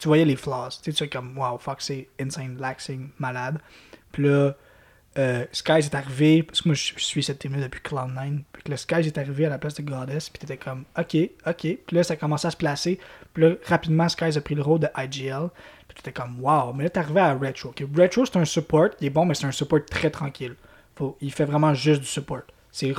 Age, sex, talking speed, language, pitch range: 20-39, male, 255 wpm, French, 135-160 Hz